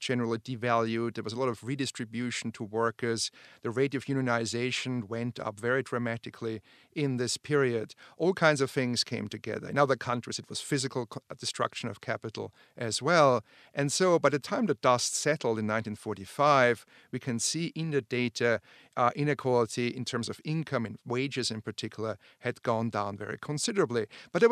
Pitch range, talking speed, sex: 115-135 Hz, 175 wpm, male